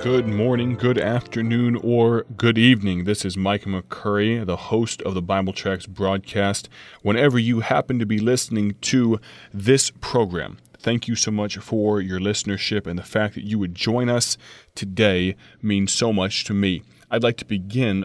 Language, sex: English, male